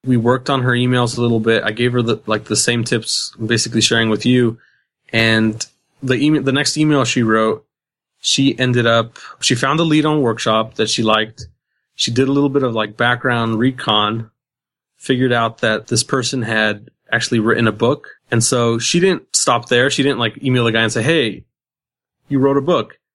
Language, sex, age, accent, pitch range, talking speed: English, male, 30-49, American, 110-130 Hz, 205 wpm